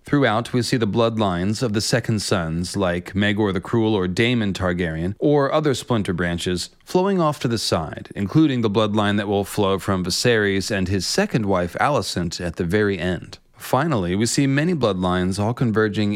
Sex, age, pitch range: male, 30-49, 100-125 Hz